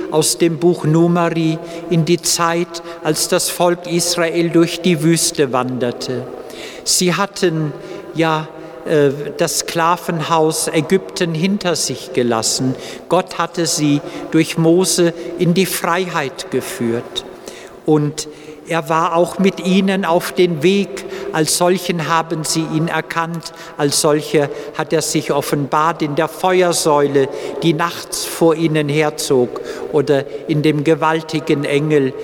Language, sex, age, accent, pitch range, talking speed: English, male, 50-69, German, 150-170 Hz, 125 wpm